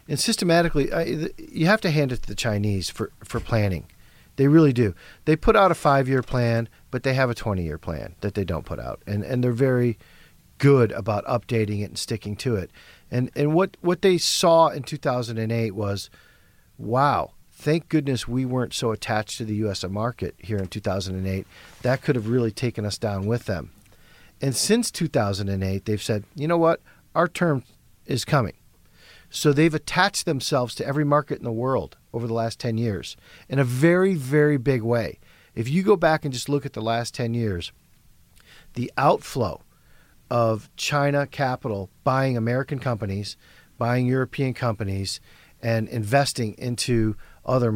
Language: English